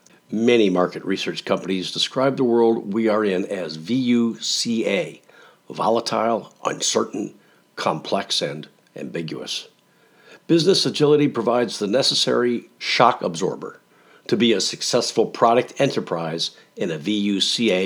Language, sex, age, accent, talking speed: English, male, 50-69, American, 110 wpm